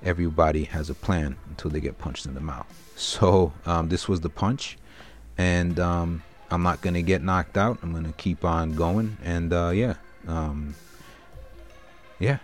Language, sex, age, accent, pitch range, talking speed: English, male, 30-49, American, 80-95 Hz, 180 wpm